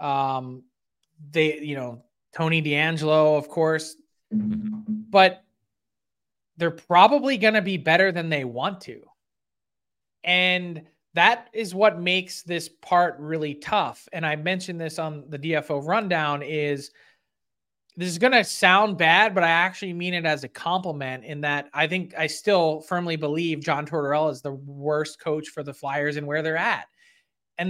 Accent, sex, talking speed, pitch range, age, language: American, male, 160 wpm, 155-195 Hz, 20-39, English